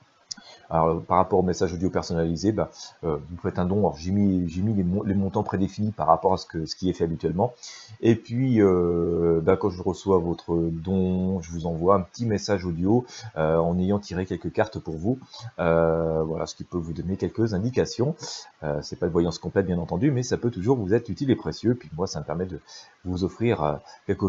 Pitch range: 90-115 Hz